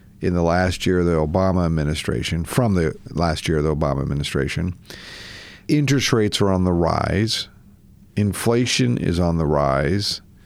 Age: 50-69